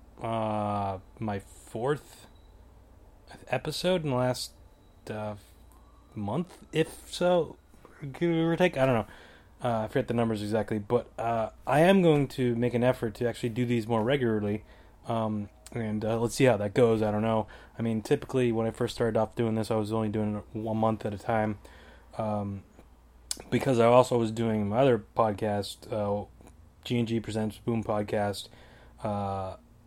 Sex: male